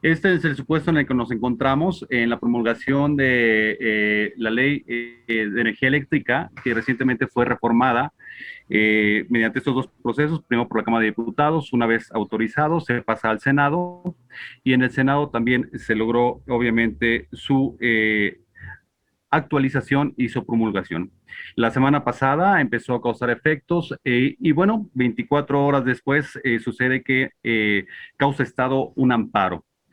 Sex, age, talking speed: male, 40-59, 155 wpm